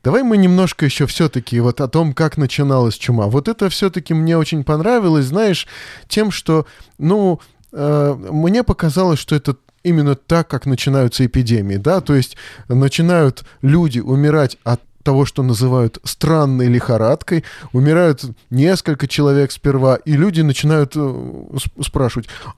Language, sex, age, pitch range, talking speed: Russian, male, 20-39, 130-165 Hz, 135 wpm